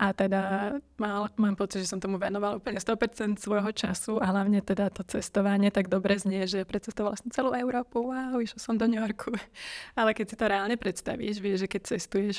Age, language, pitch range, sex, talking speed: 20-39, Slovak, 195-220 Hz, female, 205 wpm